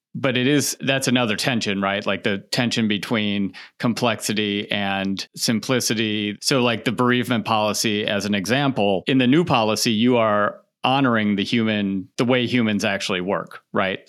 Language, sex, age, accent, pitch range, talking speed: English, male, 40-59, American, 100-120 Hz, 160 wpm